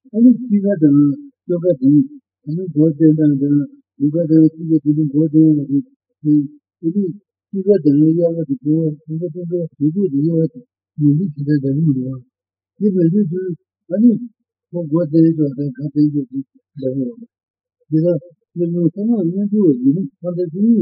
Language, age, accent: Italian, 50-69, Indian